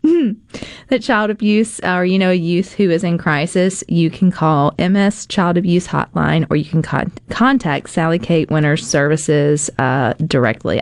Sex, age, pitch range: female, 30-49, 155-195 Hz